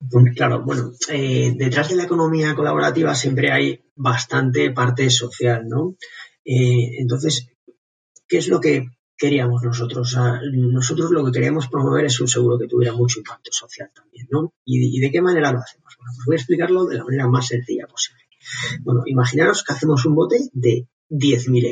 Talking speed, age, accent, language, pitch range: 185 wpm, 30-49, Spanish, Spanish, 120-155 Hz